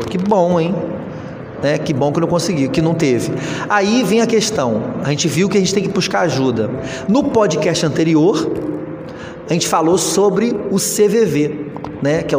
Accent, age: Brazilian, 30-49